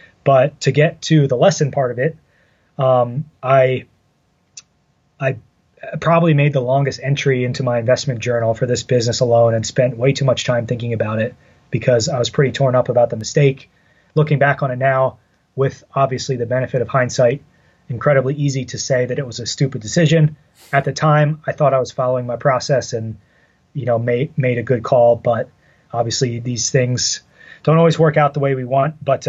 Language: English